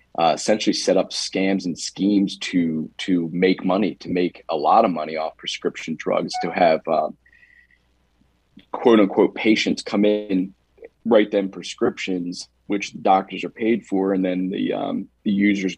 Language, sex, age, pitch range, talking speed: Arabic, male, 30-49, 90-105 Hz, 165 wpm